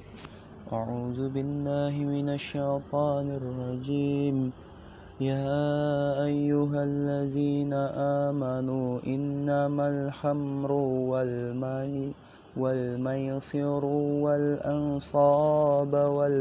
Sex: male